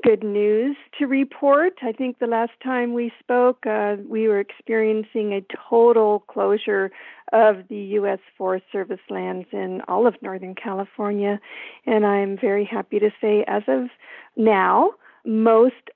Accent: American